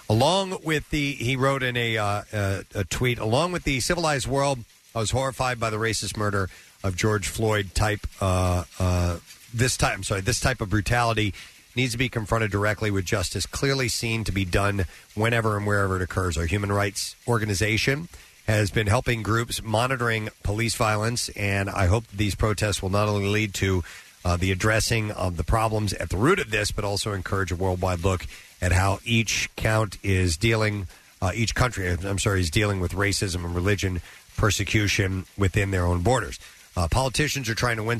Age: 40-59